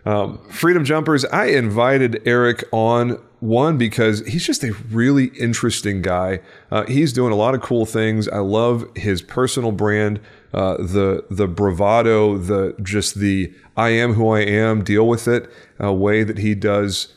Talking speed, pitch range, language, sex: 170 wpm, 100-115 Hz, English, male